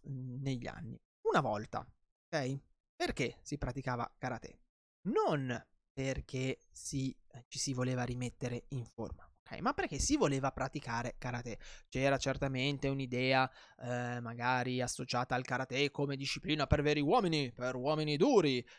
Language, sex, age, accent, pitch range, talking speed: Italian, male, 20-39, native, 125-150 Hz, 130 wpm